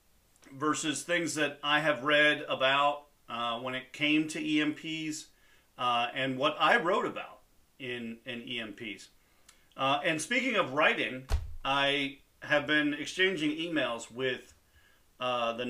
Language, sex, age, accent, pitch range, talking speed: English, male, 40-59, American, 115-145 Hz, 135 wpm